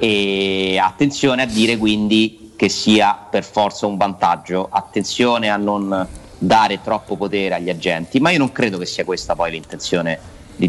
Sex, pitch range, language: male, 95-110 Hz, Italian